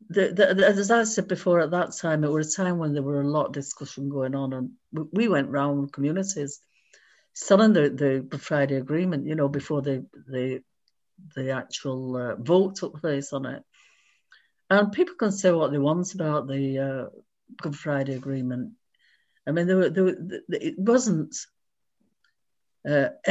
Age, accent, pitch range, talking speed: 50-69, British, 145-195 Hz, 180 wpm